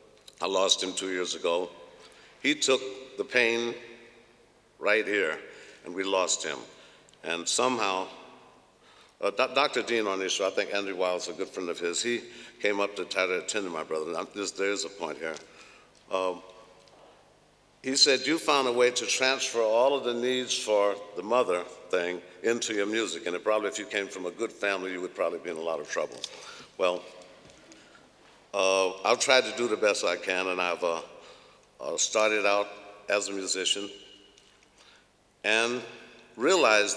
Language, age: English, 60-79